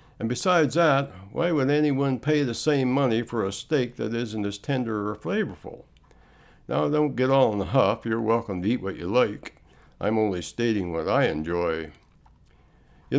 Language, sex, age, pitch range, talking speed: English, male, 60-79, 95-140 Hz, 180 wpm